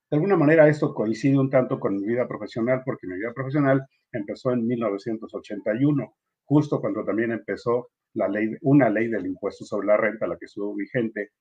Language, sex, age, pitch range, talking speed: Spanish, male, 50-69, 120-155 Hz, 185 wpm